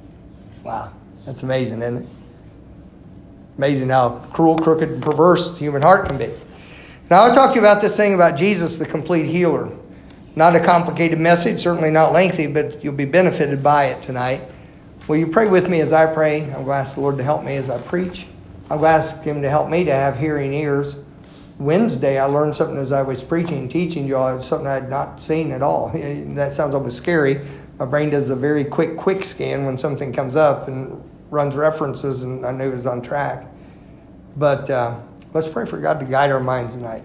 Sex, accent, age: male, American, 50-69